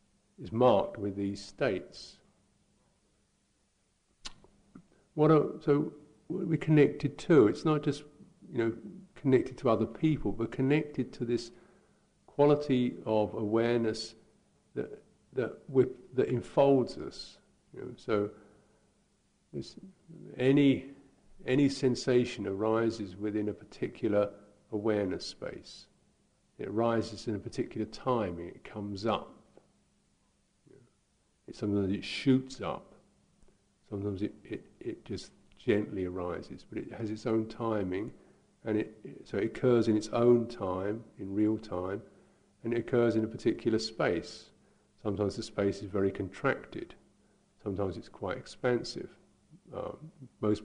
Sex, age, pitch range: male, 50-69, 100-130 Hz